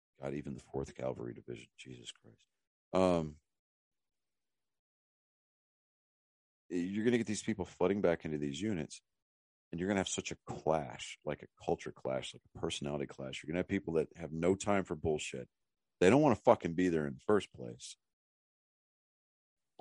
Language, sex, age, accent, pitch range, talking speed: English, male, 40-59, American, 75-95 Hz, 180 wpm